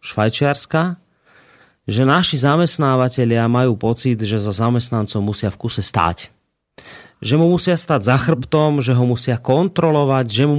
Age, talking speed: 30-49, 140 wpm